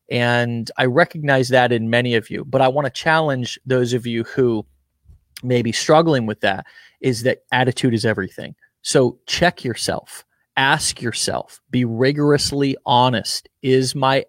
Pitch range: 115-130 Hz